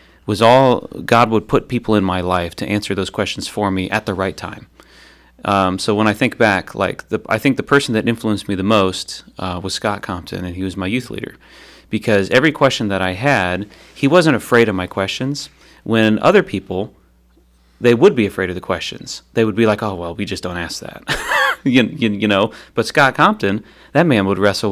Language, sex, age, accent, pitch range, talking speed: English, male, 30-49, American, 95-110 Hz, 215 wpm